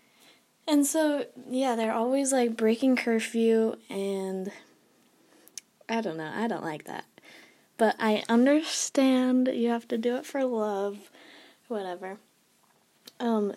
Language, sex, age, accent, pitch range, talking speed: English, female, 20-39, American, 195-245 Hz, 125 wpm